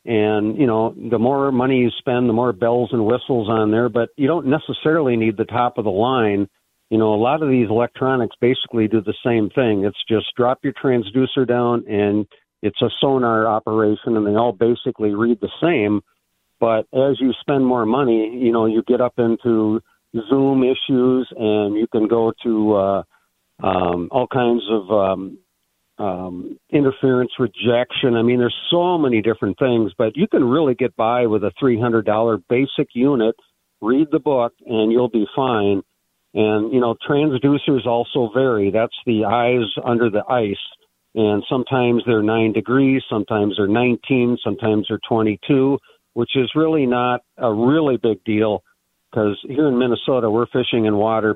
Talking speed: 170 wpm